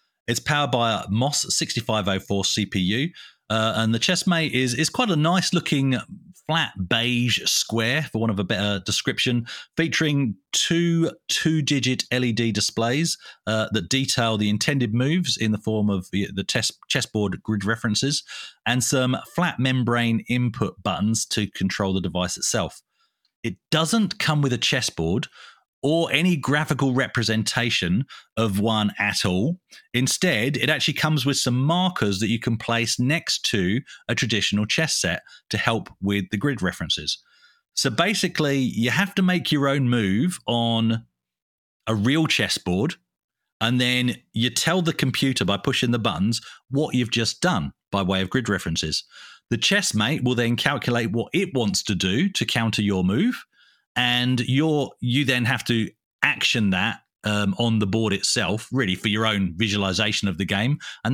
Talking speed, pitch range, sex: 160 wpm, 105-140 Hz, male